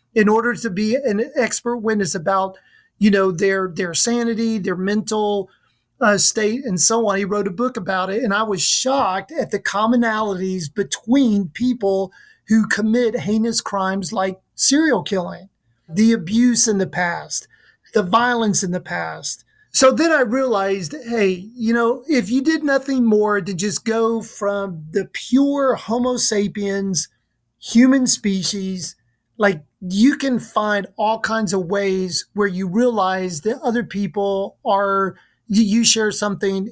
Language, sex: English, male